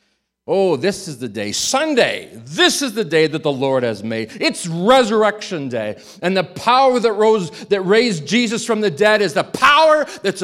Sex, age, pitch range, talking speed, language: male, 40-59, 130-215 Hz, 190 wpm, English